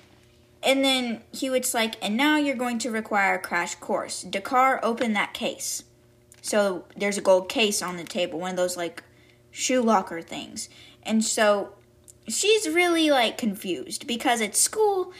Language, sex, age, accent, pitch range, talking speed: English, female, 10-29, American, 185-275 Hz, 160 wpm